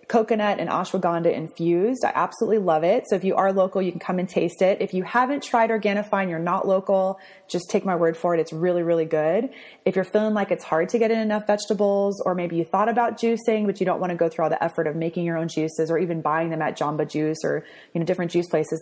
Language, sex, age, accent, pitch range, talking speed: English, female, 20-39, American, 165-200 Hz, 265 wpm